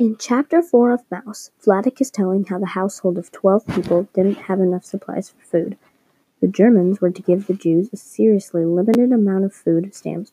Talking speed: 200 wpm